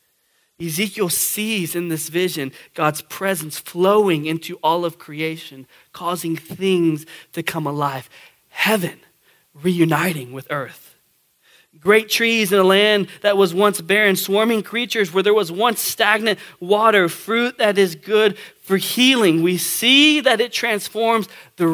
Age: 20-39